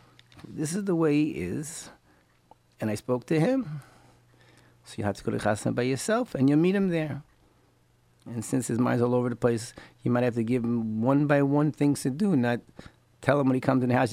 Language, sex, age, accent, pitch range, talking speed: English, male, 50-69, American, 115-155 Hz, 220 wpm